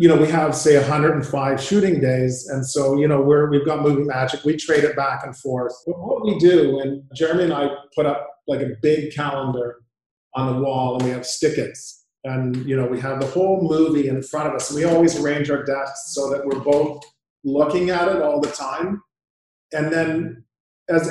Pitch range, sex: 135-155 Hz, male